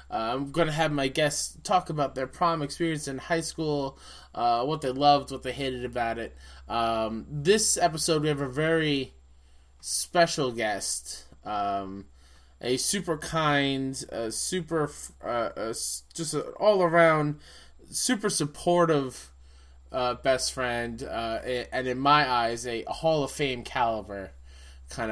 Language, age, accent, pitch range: English, 20-39, American, 105-145 Hz